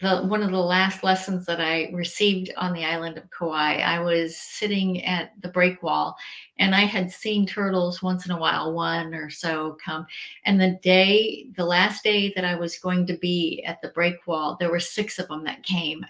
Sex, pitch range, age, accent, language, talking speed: female, 170-190 Hz, 50-69, American, English, 210 wpm